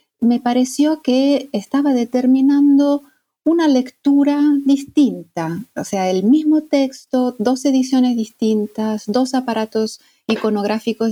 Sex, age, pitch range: female, 40-59, 195-260 Hz